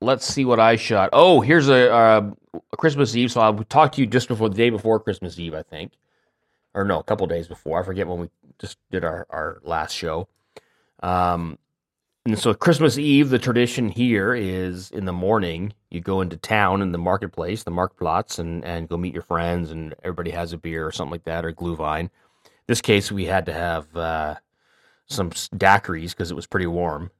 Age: 30-49